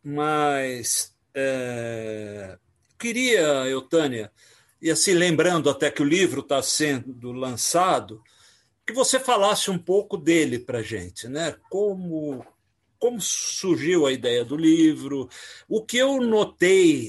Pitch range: 120-175 Hz